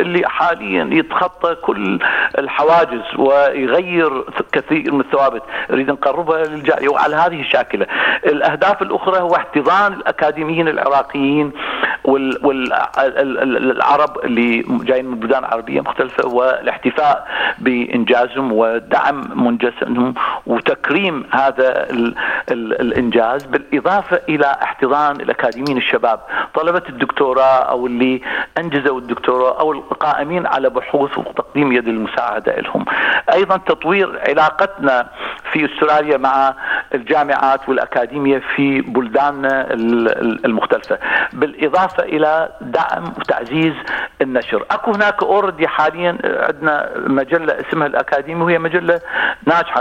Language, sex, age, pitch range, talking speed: Arabic, male, 50-69, 130-170 Hz, 100 wpm